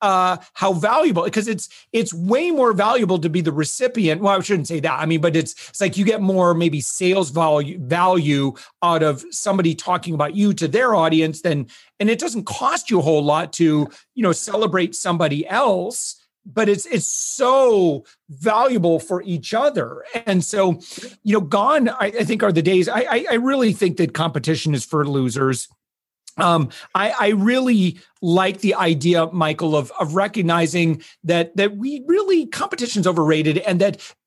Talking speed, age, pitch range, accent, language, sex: 180 wpm, 40-59, 160-210 Hz, American, English, male